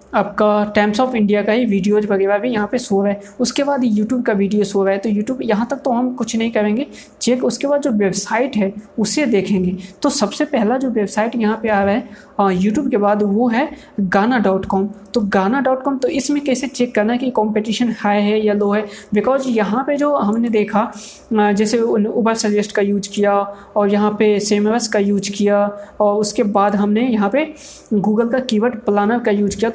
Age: 20-39